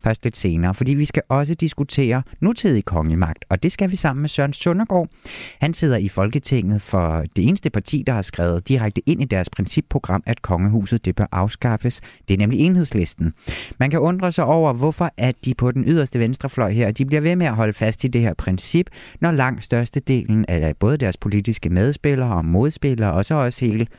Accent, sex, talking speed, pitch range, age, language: native, male, 200 wpm, 105-145 Hz, 30-49, Danish